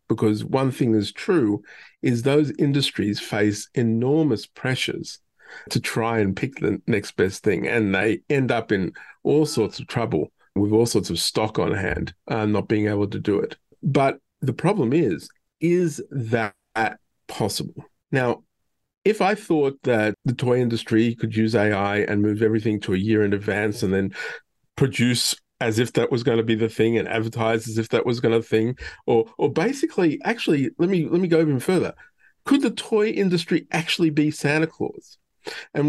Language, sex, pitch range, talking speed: English, male, 110-160 Hz, 180 wpm